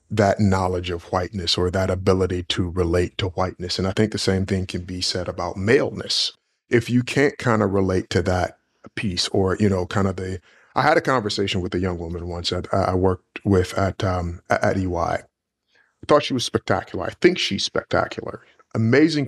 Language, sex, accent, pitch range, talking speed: English, male, American, 95-115 Hz, 200 wpm